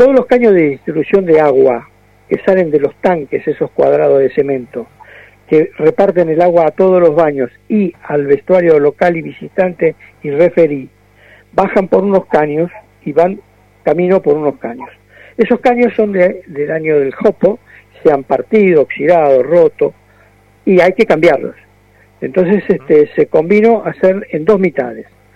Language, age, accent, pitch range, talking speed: Spanish, 60-79, Argentinian, 140-200 Hz, 160 wpm